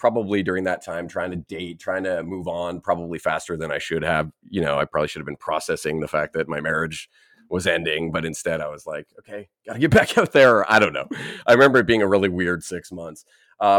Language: English